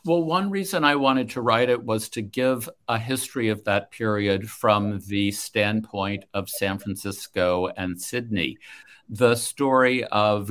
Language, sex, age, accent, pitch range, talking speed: English, male, 50-69, American, 90-110 Hz, 155 wpm